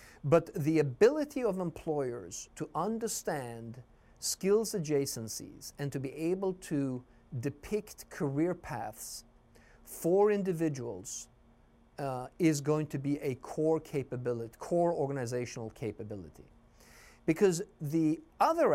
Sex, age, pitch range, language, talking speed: male, 50-69, 115-155 Hz, English, 100 wpm